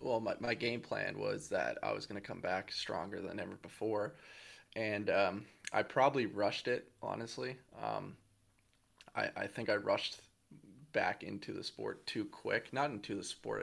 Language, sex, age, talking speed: English, male, 20-39, 175 wpm